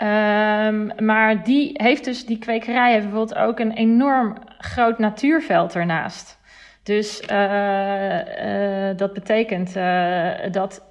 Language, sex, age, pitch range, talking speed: Dutch, female, 40-59, 195-235 Hz, 120 wpm